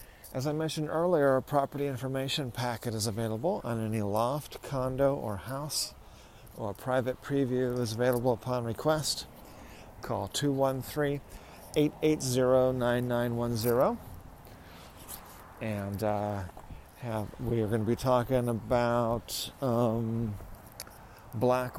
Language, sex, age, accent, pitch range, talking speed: English, male, 50-69, American, 110-135 Hz, 110 wpm